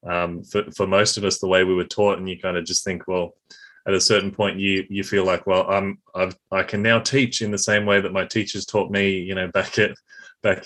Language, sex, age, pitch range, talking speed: English, male, 20-39, 95-110 Hz, 265 wpm